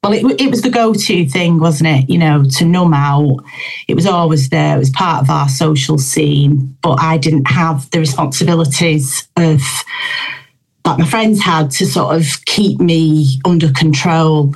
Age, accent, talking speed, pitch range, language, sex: 30-49, British, 175 wpm, 145-170 Hz, English, female